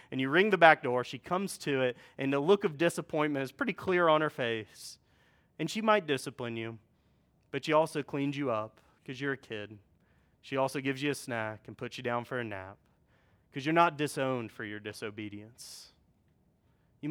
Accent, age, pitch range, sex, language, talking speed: American, 30-49, 120-155 Hz, male, English, 200 wpm